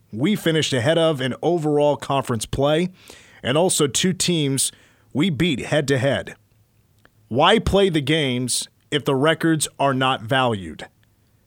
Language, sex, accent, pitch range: English, male, American, 115-155 Hz